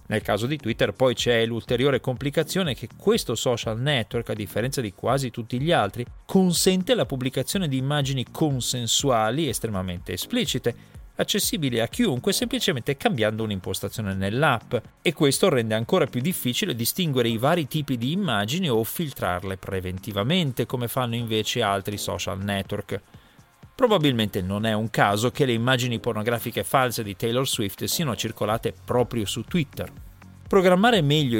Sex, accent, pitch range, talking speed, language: male, native, 110-140 Hz, 145 wpm, Italian